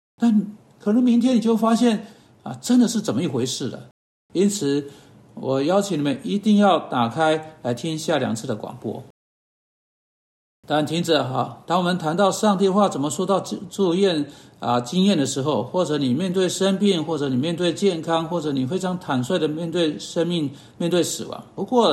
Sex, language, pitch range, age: male, Chinese, 140-200 Hz, 60-79